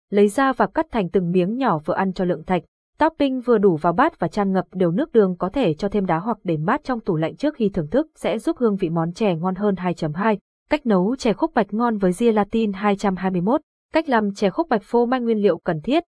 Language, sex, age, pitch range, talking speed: Vietnamese, female, 20-39, 185-245 Hz, 250 wpm